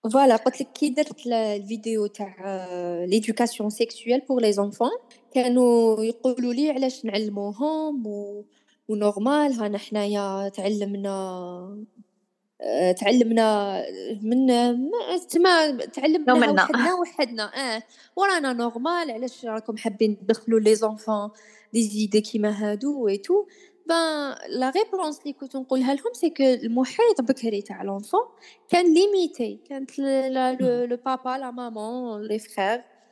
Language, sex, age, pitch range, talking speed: Arabic, female, 20-39, 210-295 Hz, 110 wpm